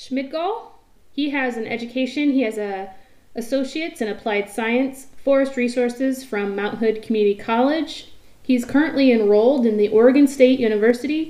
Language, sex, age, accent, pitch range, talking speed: English, female, 30-49, American, 215-265 Hz, 145 wpm